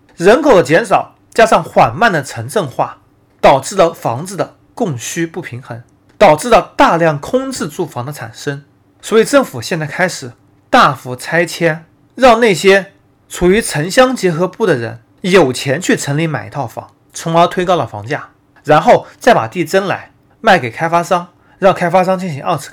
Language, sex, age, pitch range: Chinese, male, 30-49, 130-200 Hz